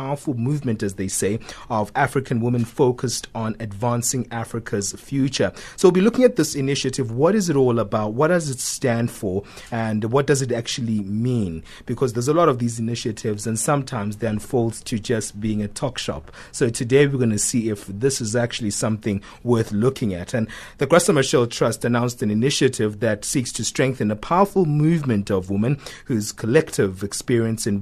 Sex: male